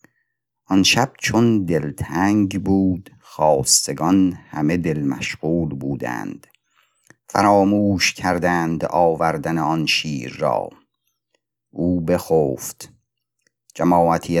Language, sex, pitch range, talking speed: Persian, male, 75-95 Hz, 80 wpm